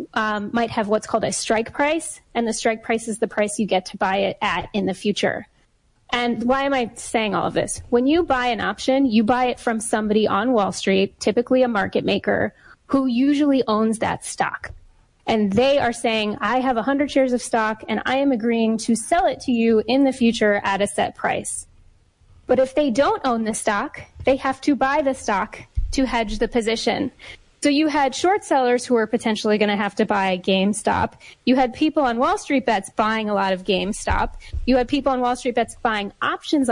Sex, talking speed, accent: female, 215 wpm, American